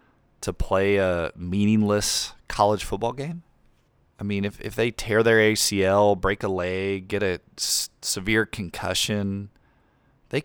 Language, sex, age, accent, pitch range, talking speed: English, male, 30-49, American, 95-115 Hz, 140 wpm